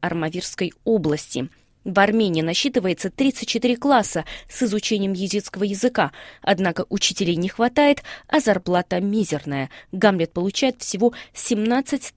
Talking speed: 110 wpm